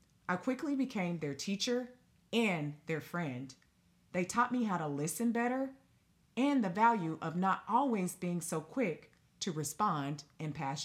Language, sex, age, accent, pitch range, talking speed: English, female, 40-59, American, 140-215 Hz, 155 wpm